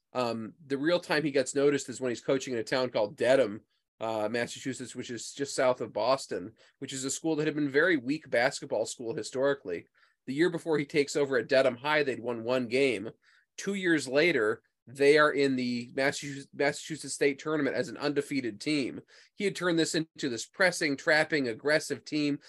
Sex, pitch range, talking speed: male, 130-160 Hz, 195 wpm